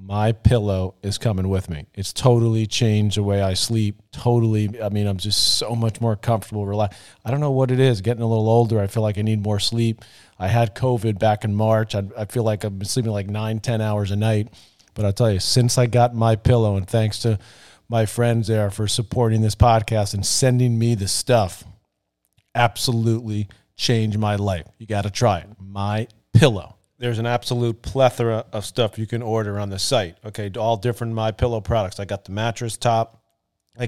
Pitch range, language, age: 100-120 Hz, English, 40-59